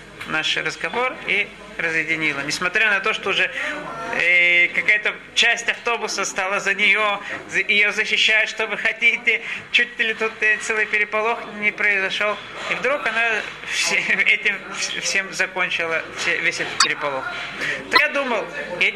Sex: male